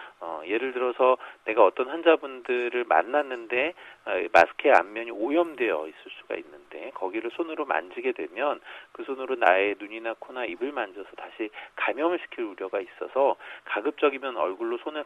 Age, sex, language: 40-59, male, Korean